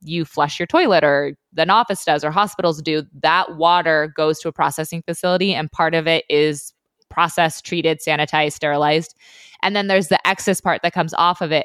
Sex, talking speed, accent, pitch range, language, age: female, 195 wpm, American, 150-175 Hz, English, 20-39